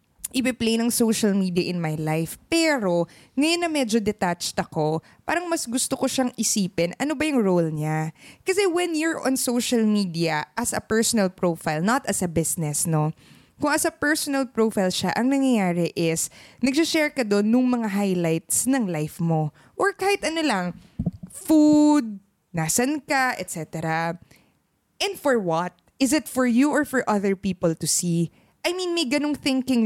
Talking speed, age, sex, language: 165 wpm, 20-39, female, Filipino